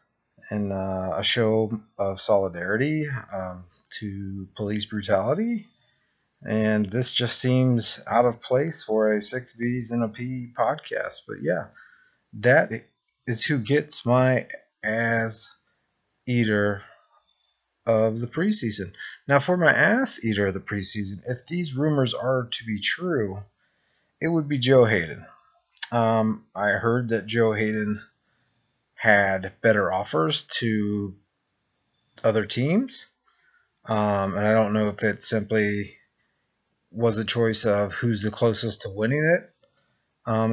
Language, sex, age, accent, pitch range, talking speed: English, male, 30-49, American, 105-125 Hz, 130 wpm